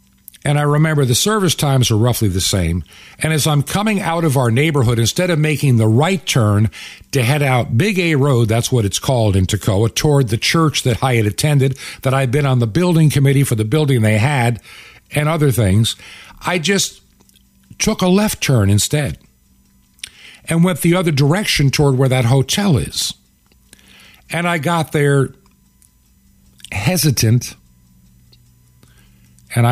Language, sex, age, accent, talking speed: English, male, 50-69, American, 165 wpm